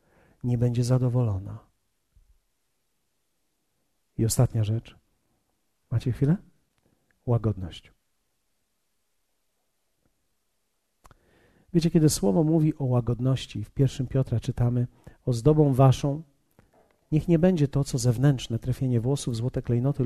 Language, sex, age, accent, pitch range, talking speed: Polish, male, 40-59, native, 115-150 Hz, 95 wpm